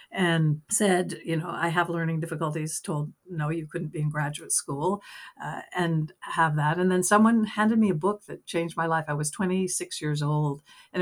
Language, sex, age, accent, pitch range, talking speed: English, female, 60-79, American, 155-185 Hz, 200 wpm